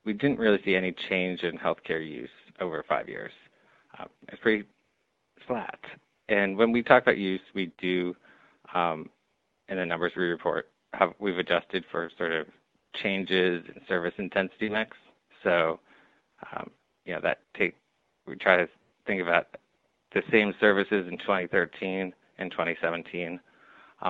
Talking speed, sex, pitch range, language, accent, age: 145 wpm, male, 90-105 Hz, English, American, 30-49